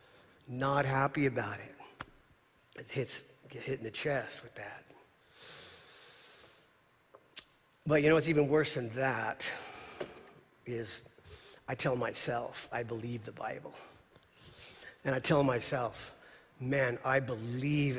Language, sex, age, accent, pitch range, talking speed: English, male, 40-59, American, 120-155 Hz, 120 wpm